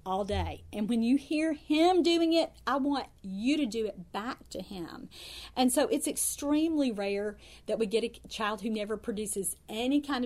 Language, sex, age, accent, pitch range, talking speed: English, female, 40-59, American, 205-270 Hz, 195 wpm